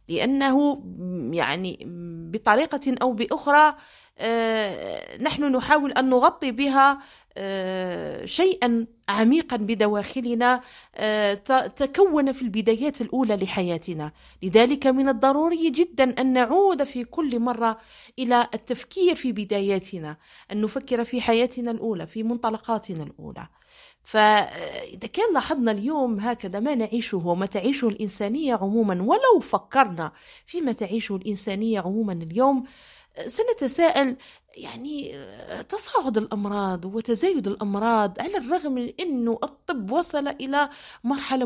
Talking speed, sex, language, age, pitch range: 105 wpm, female, Arabic, 40-59, 210-290 Hz